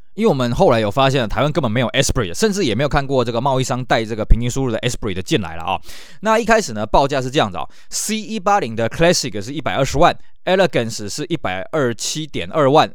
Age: 20-39